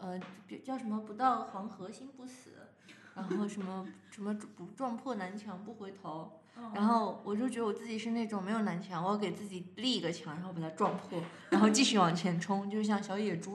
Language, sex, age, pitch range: Chinese, female, 20-39, 180-225 Hz